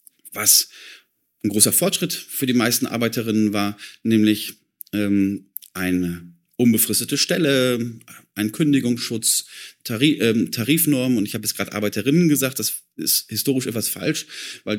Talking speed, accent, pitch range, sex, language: 130 wpm, German, 105-130 Hz, male, German